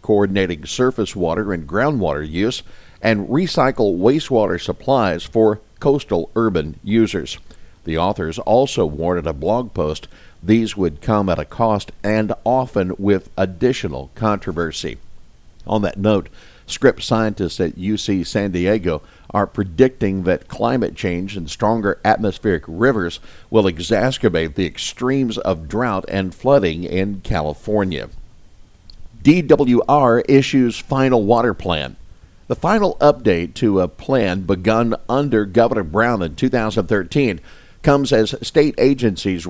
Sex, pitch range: male, 90-115 Hz